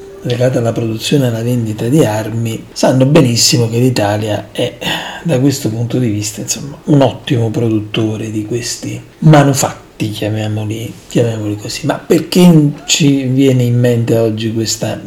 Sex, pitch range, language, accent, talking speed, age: male, 115-150 Hz, Italian, native, 145 wpm, 40-59